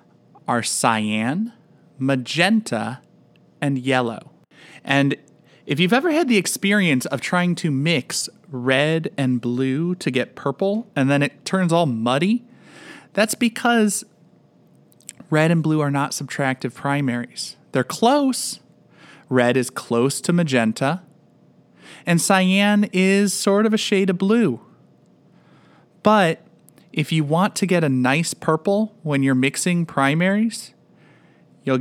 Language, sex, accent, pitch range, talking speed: English, male, American, 130-195 Hz, 125 wpm